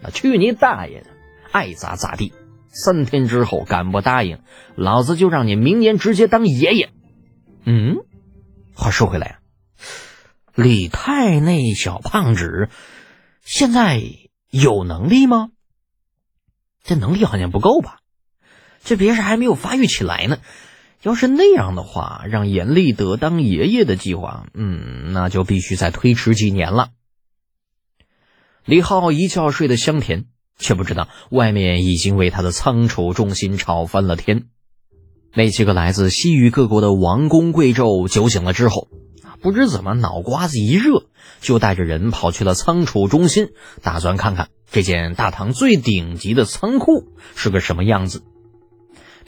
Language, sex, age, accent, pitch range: Chinese, male, 30-49, native, 95-135 Hz